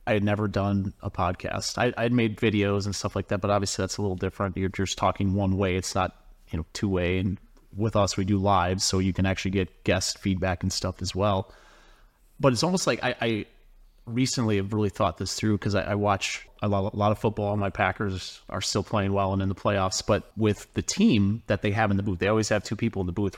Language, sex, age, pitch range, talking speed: English, male, 30-49, 95-110 Hz, 255 wpm